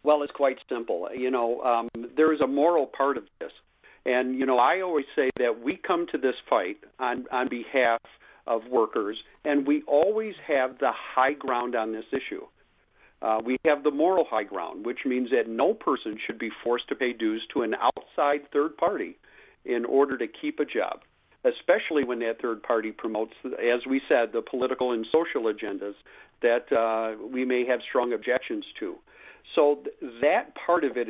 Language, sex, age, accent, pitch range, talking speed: English, male, 50-69, American, 125-180 Hz, 185 wpm